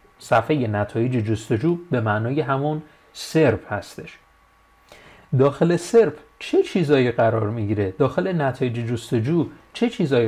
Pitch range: 115-160 Hz